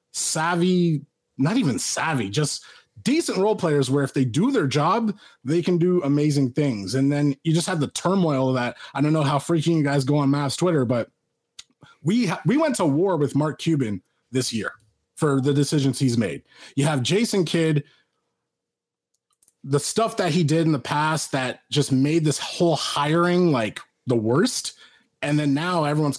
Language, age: English, 30-49